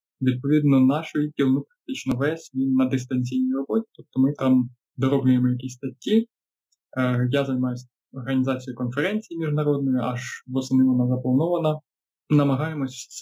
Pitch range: 130-150 Hz